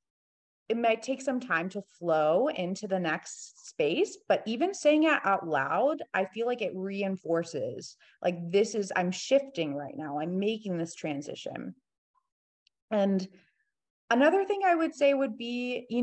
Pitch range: 185-230 Hz